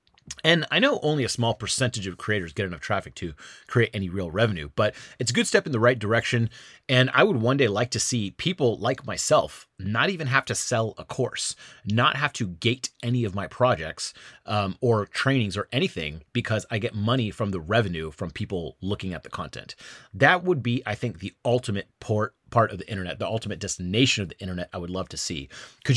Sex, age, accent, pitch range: male, 30-49, American, 95-125 Hz